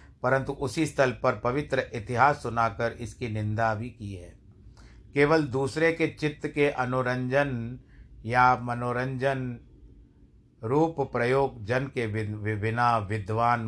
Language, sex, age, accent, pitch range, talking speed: Hindi, male, 50-69, native, 105-125 Hz, 115 wpm